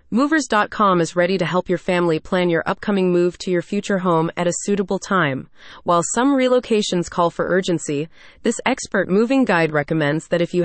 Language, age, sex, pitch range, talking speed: English, 30-49, female, 170-225 Hz, 185 wpm